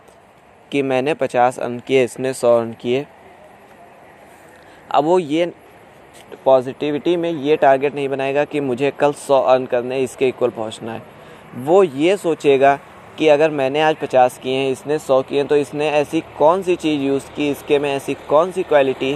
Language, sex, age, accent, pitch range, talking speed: Hindi, male, 20-39, native, 125-150 Hz, 175 wpm